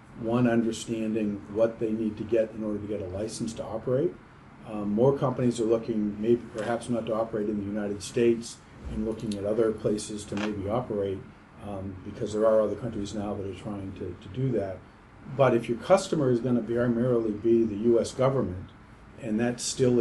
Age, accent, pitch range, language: 50-69, American, 105-120 Hz, English